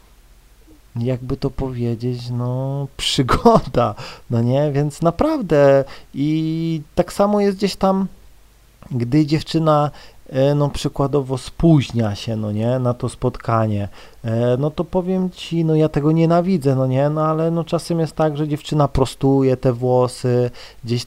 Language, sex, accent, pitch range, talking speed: Polish, male, native, 125-155 Hz, 135 wpm